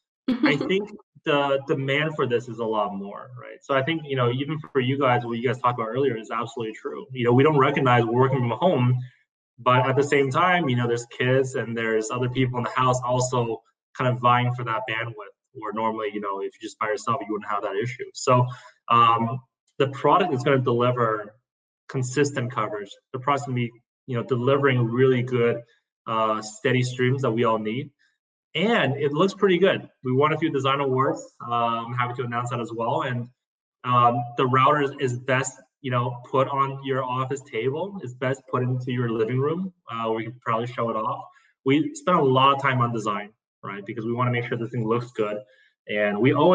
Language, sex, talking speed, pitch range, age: English, male, 220 wpm, 115-135 Hz, 20-39